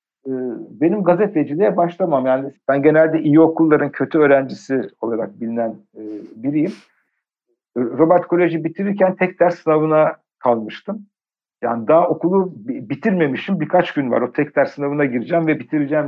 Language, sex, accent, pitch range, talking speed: Turkish, male, native, 135-180 Hz, 125 wpm